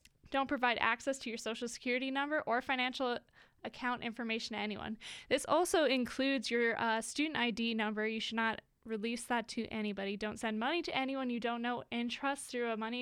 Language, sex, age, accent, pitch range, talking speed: English, female, 20-39, American, 225-270 Hz, 195 wpm